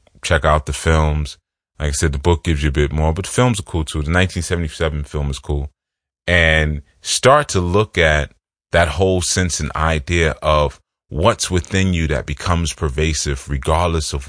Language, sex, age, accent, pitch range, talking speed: English, male, 30-49, American, 75-95 Hz, 180 wpm